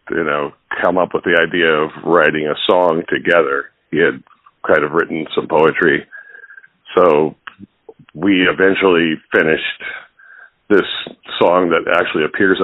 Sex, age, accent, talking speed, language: male, 50-69, American, 135 wpm, English